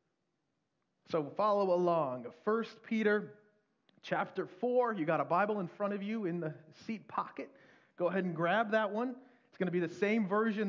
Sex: male